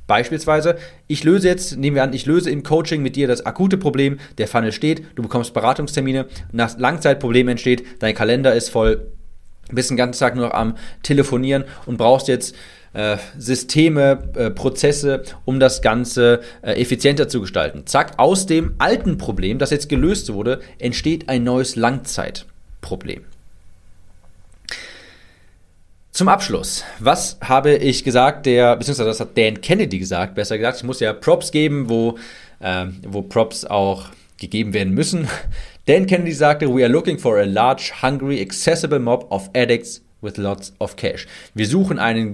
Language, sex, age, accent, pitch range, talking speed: German, male, 30-49, German, 110-145 Hz, 160 wpm